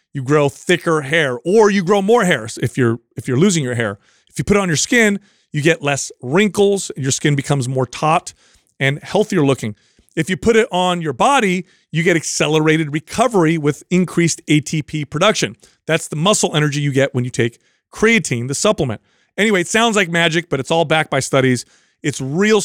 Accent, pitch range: American, 140-180 Hz